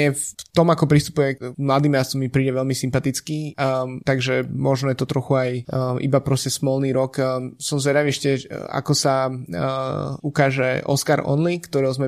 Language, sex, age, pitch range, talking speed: Slovak, male, 20-39, 125-135 Hz, 175 wpm